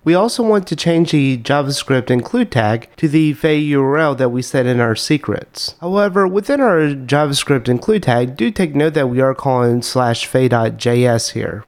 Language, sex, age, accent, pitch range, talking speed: English, male, 30-49, American, 125-155 Hz, 180 wpm